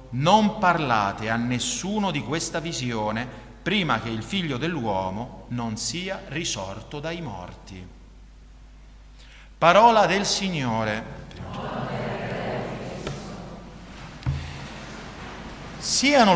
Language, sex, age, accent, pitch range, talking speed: Italian, male, 50-69, native, 130-195 Hz, 75 wpm